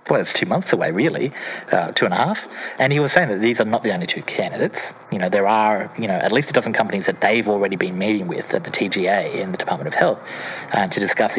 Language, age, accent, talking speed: English, 40-59, Australian, 270 wpm